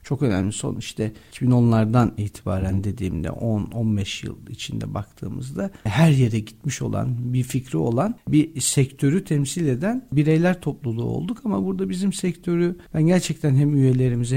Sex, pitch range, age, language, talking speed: male, 130-170 Hz, 50-69, Turkish, 140 wpm